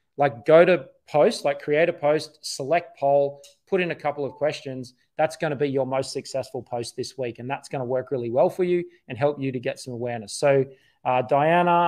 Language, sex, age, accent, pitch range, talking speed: English, male, 20-39, Australian, 130-155 Hz, 225 wpm